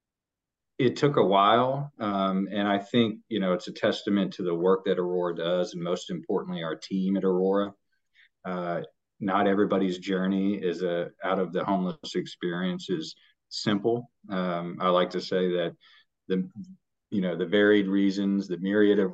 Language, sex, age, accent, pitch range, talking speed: English, male, 40-59, American, 90-100 Hz, 170 wpm